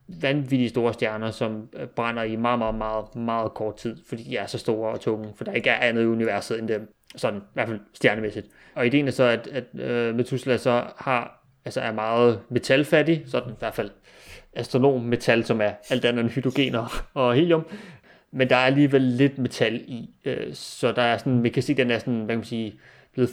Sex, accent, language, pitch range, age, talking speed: male, native, Danish, 115-130 Hz, 30-49, 215 wpm